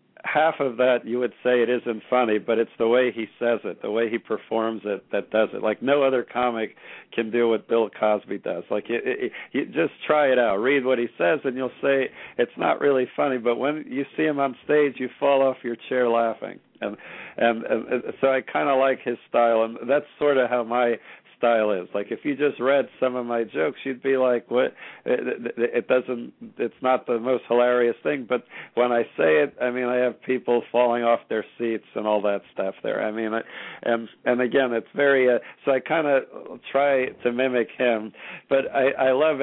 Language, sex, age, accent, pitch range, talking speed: English, male, 50-69, American, 115-130 Hz, 220 wpm